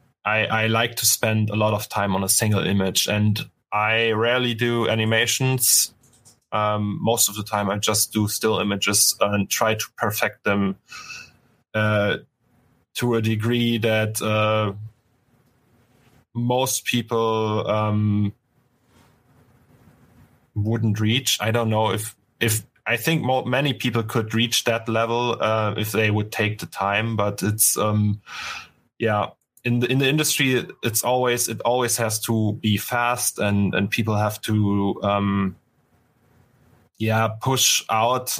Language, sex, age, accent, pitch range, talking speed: English, male, 20-39, German, 105-120 Hz, 140 wpm